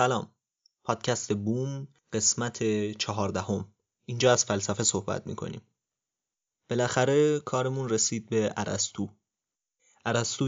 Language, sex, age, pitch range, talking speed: Persian, male, 20-39, 105-120 Hz, 90 wpm